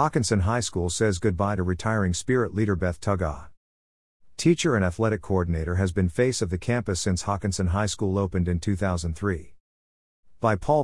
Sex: male